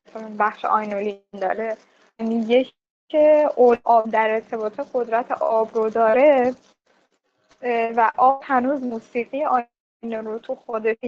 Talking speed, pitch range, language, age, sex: 110 wpm, 220-260 Hz, Persian, 10-29, female